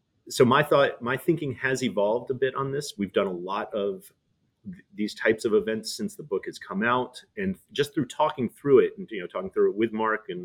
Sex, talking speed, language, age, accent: male, 240 wpm, English, 30-49, American